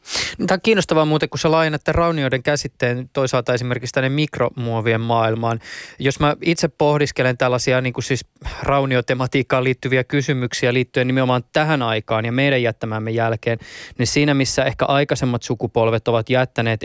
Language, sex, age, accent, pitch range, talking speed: Finnish, male, 20-39, native, 115-135 Hz, 145 wpm